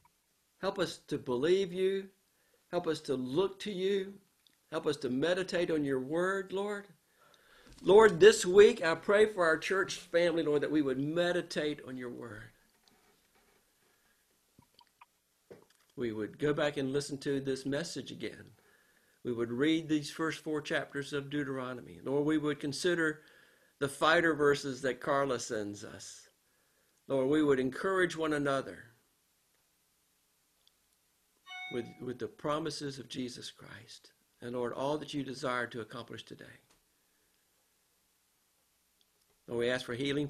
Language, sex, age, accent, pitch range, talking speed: English, male, 50-69, American, 125-165 Hz, 140 wpm